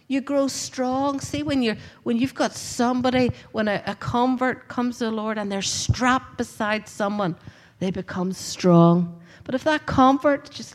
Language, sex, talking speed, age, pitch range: English, female, 175 wpm, 50-69, 185-235 Hz